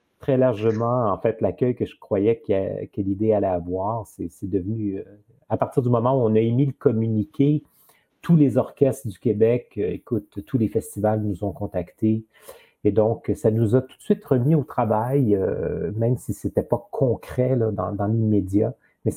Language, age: French, 40-59